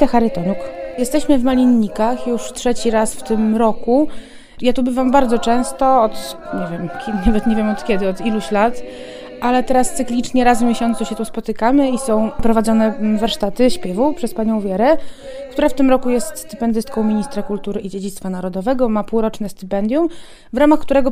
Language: Polish